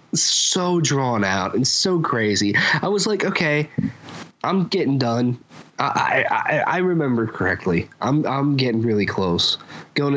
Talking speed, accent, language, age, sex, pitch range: 150 wpm, American, English, 20-39, male, 130-175 Hz